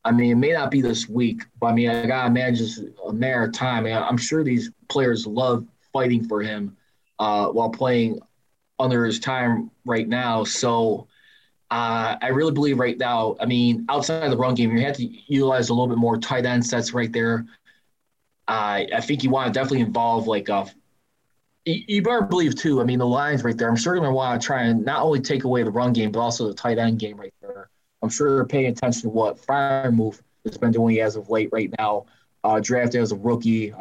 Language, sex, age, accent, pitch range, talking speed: English, male, 20-39, American, 115-135 Hz, 225 wpm